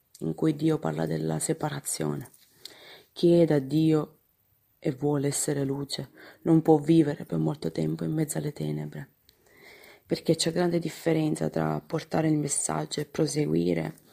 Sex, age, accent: female, 20-39, native